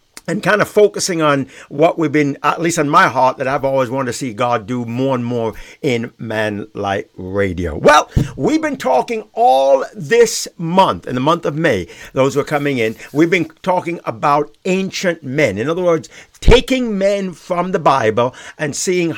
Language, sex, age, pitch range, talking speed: English, male, 60-79, 140-190 Hz, 190 wpm